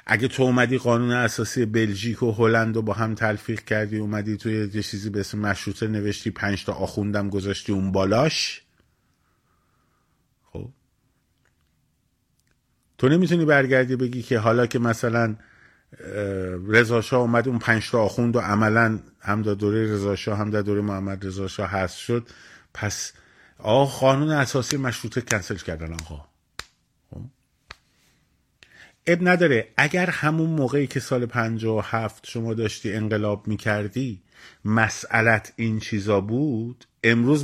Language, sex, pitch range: Persian, male, 100-125 Hz